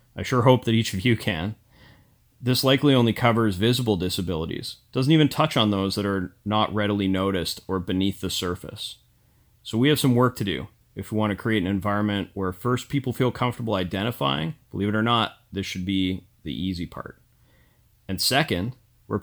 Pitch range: 100-120 Hz